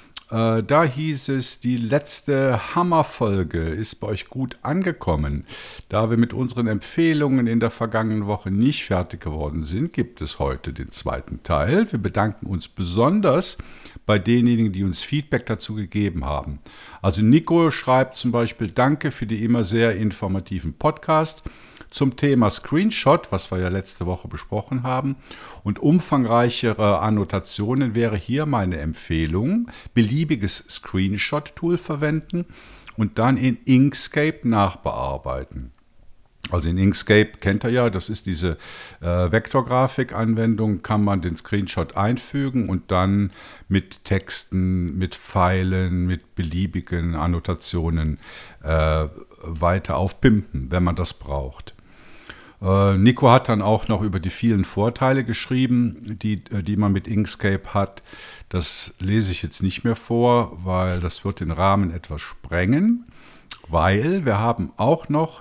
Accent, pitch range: German, 90-125 Hz